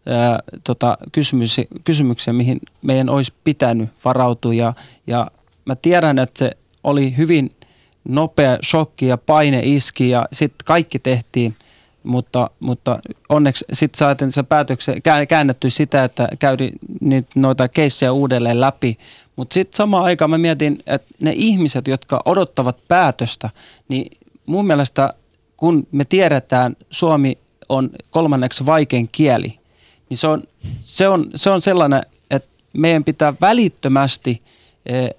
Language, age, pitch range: Finnish, 30-49, 125-160 Hz